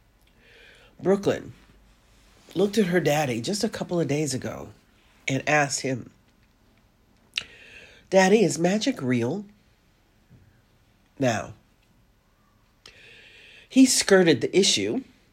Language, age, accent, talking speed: English, 40-59, American, 90 wpm